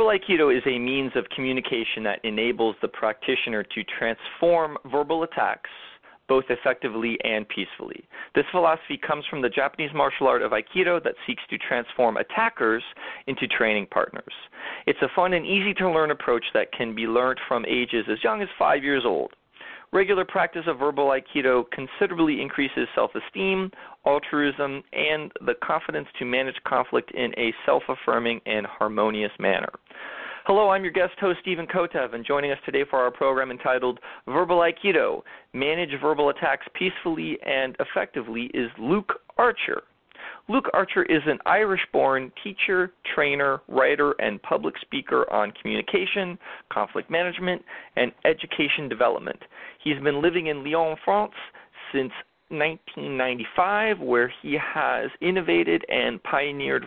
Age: 40-59